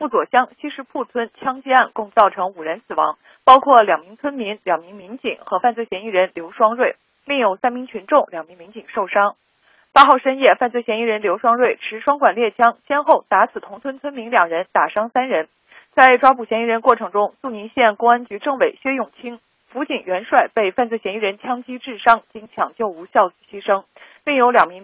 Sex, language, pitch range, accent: female, Chinese, 210-275 Hz, native